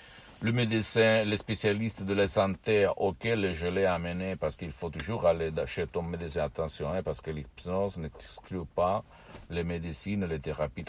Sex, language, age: male, Italian, 60-79